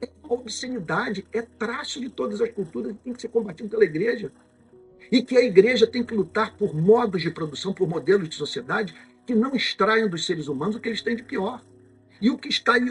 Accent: Brazilian